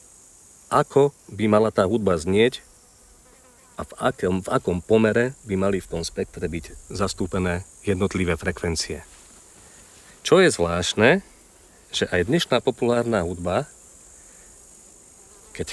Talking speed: 110 wpm